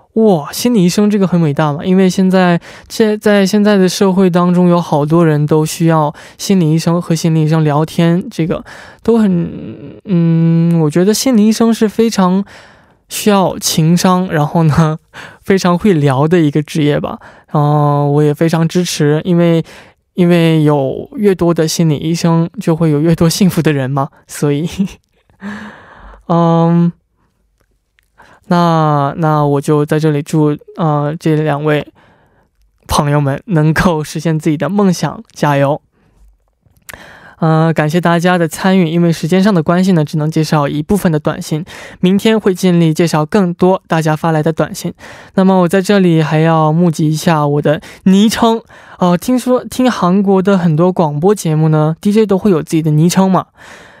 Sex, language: male, Korean